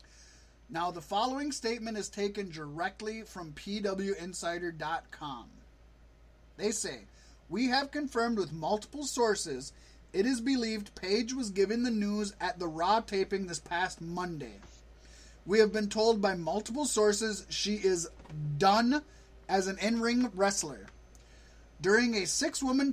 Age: 30-49